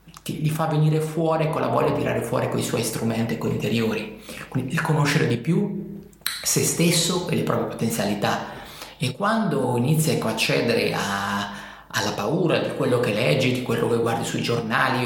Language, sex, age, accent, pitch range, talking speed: Italian, male, 30-49, native, 115-155 Hz, 180 wpm